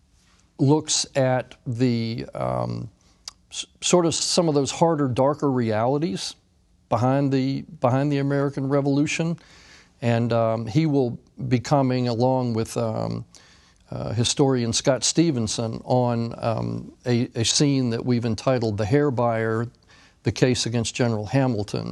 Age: 50-69